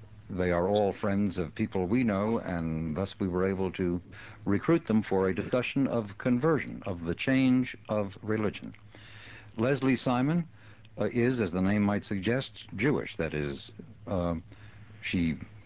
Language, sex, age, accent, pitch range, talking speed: English, male, 60-79, American, 95-115 Hz, 155 wpm